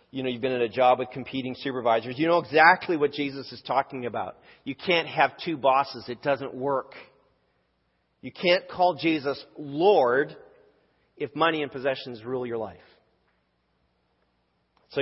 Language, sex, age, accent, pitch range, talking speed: English, male, 40-59, American, 95-150 Hz, 155 wpm